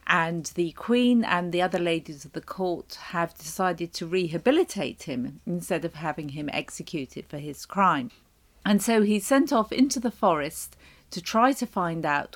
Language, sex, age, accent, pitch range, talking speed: English, female, 50-69, British, 170-220 Hz, 175 wpm